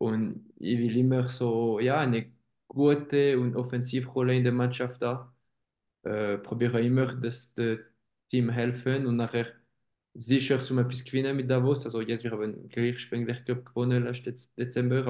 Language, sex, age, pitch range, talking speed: German, male, 20-39, 120-130 Hz, 165 wpm